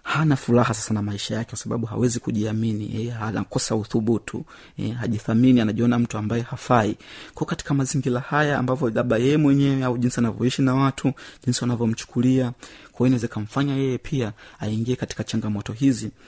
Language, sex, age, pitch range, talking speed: Swahili, male, 30-49, 115-130 Hz, 160 wpm